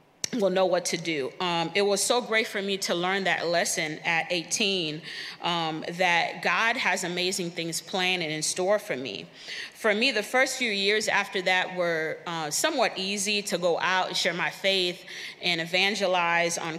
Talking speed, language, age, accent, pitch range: 185 wpm, English, 30-49, American, 170-200 Hz